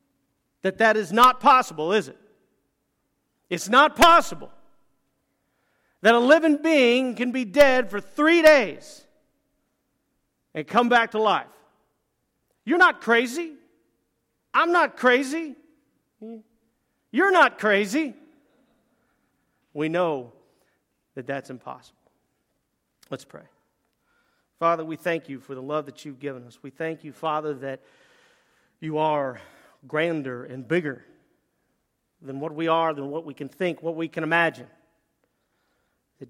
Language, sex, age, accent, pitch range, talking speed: English, male, 40-59, American, 155-240 Hz, 125 wpm